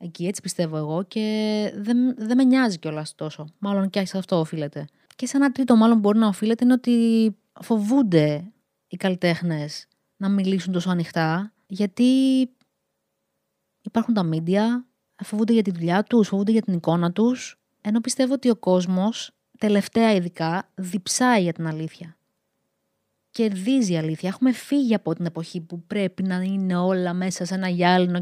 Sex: female